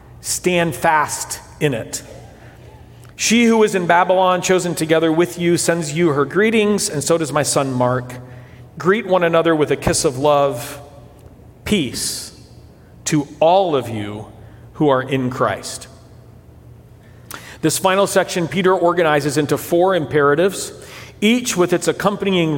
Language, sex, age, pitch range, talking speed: English, male, 40-59, 135-180 Hz, 140 wpm